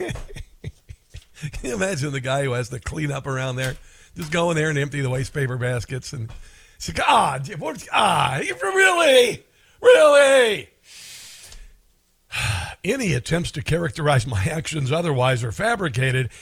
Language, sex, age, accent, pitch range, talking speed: English, male, 50-69, American, 130-175 Hz, 130 wpm